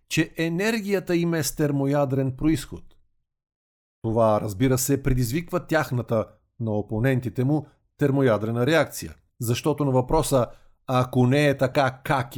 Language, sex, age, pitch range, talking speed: Bulgarian, male, 50-69, 115-150 Hz, 115 wpm